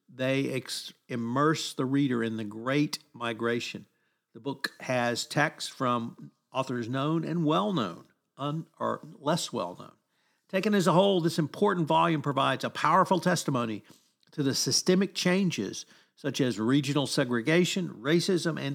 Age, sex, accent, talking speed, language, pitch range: 50-69, male, American, 130 wpm, English, 135-170 Hz